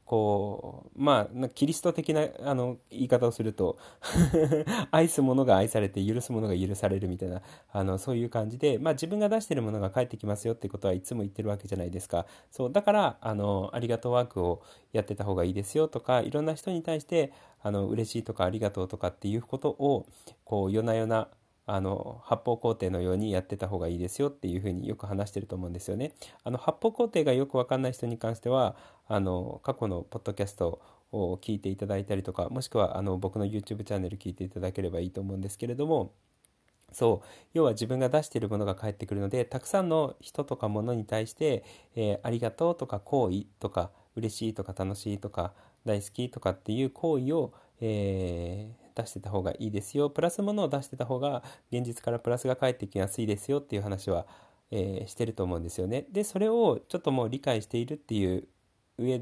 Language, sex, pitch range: Japanese, male, 100-135 Hz